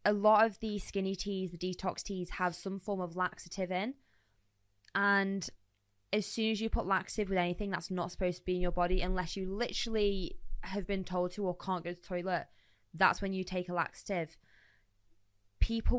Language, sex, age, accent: English, female, 20-39, British